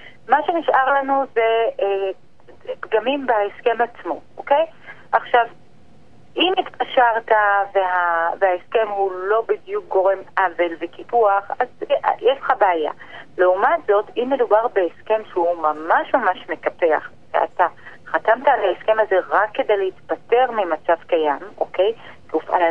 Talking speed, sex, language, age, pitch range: 120 wpm, female, Hebrew, 30-49, 180-250 Hz